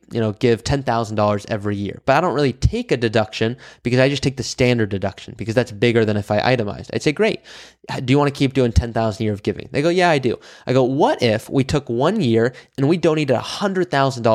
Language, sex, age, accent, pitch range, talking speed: English, male, 20-39, American, 115-150 Hz, 240 wpm